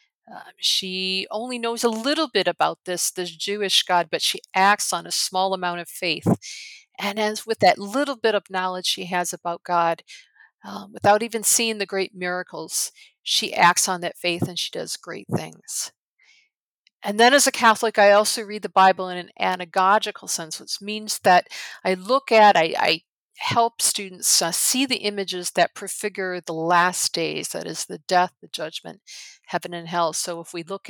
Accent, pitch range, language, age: American, 175-220 Hz, English, 50-69